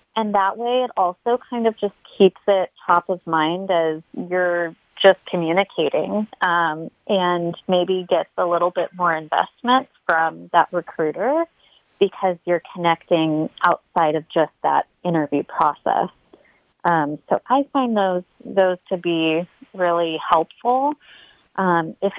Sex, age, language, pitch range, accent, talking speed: female, 30-49, English, 160-200 Hz, American, 135 wpm